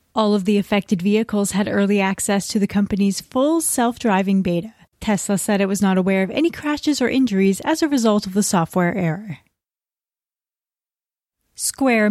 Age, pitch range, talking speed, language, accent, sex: 30-49, 200-260 Hz, 165 wpm, English, American, female